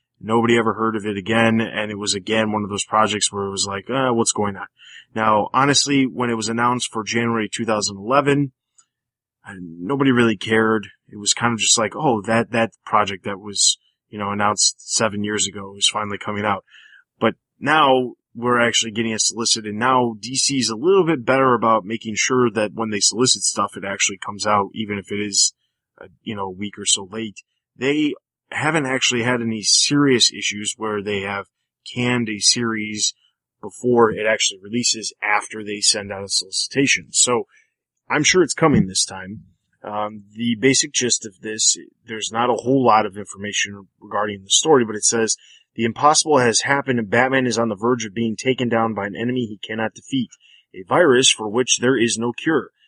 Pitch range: 105-125 Hz